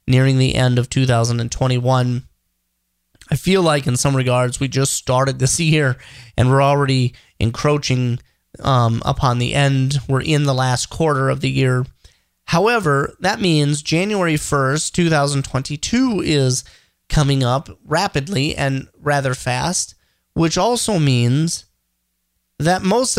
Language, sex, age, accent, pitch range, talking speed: English, male, 30-49, American, 125-165 Hz, 130 wpm